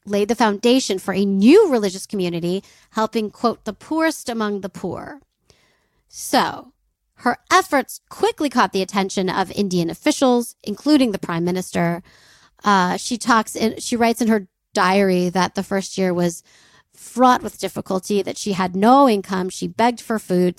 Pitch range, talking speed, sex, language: 190-245 Hz, 160 wpm, female, English